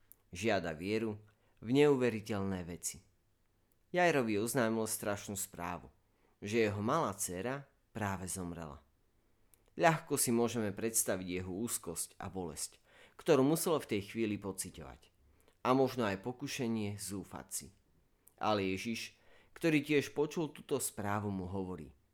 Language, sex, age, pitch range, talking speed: Slovak, male, 30-49, 95-115 Hz, 120 wpm